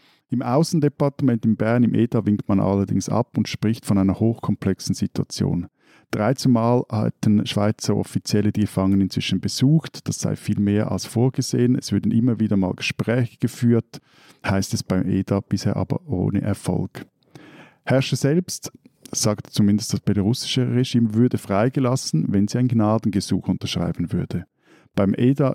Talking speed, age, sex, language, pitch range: 150 wpm, 50-69, male, German, 100-125 Hz